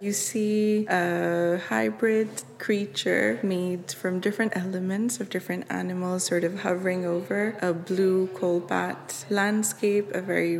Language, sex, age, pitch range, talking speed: English, female, 20-39, 180-205 Hz, 125 wpm